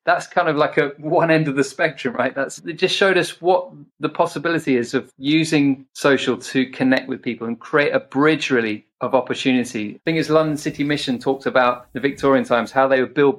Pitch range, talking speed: 125-145 Hz, 215 wpm